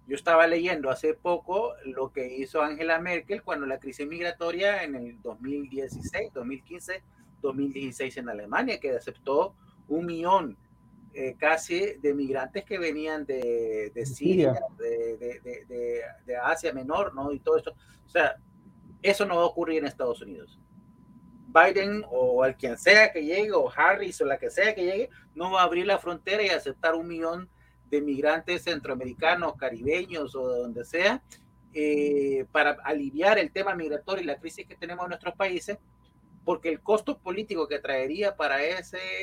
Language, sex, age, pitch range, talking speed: Spanish, male, 30-49, 145-200 Hz, 170 wpm